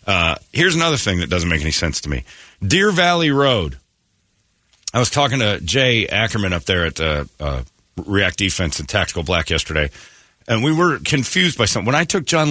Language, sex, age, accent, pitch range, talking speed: English, male, 40-59, American, 90-130 Hz, 195 wpm